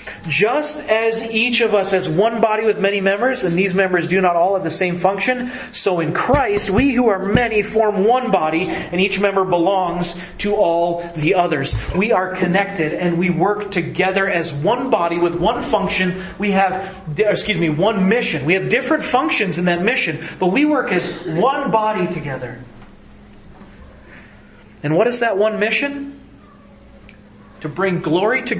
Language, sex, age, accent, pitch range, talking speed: English, male, 30-49, American, 155-195 Hz, 170 wpm